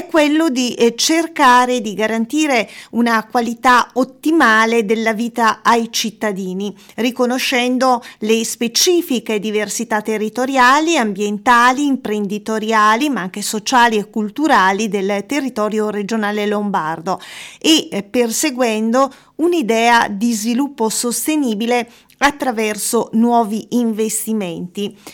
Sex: female